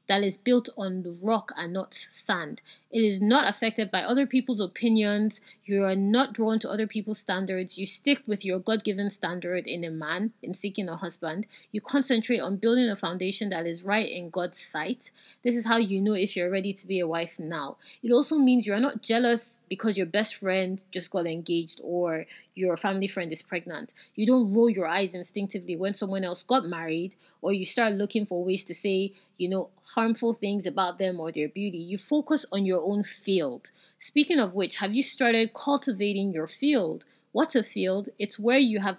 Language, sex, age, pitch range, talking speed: English, female, 20-39, 180-230 Hz, 205 wpm